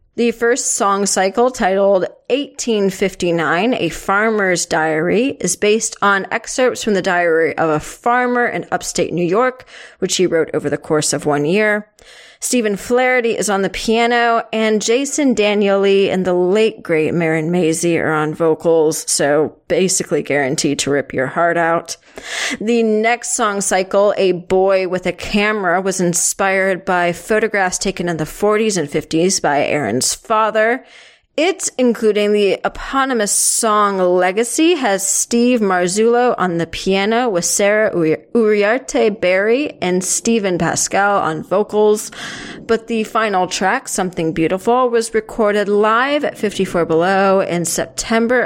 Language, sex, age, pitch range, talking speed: English, female, 30-49, 175-225 Hz, 140 wpm